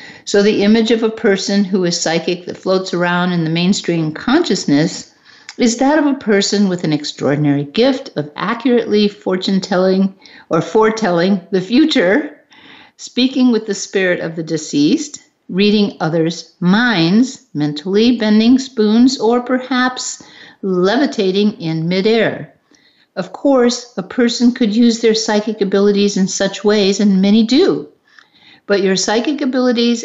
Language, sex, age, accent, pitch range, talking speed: English, female, 50-69, American, 180-240 Hz, 140 wpm